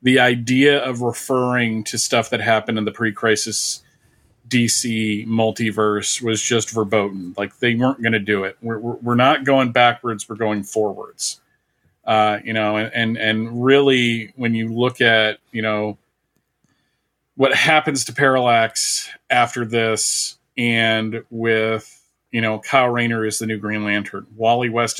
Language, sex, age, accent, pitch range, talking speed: English, male, 40-59, American, 110-125 Hz, 155 wpm